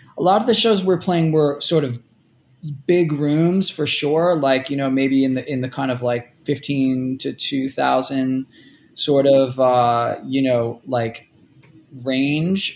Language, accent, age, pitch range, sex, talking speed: English, American, 20-39, 130-160 Hz, male, 165 wpm